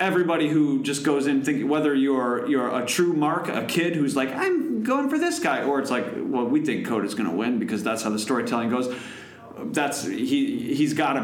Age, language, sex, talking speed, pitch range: 30-49, English, male, 220 wpm, 135-225 Hz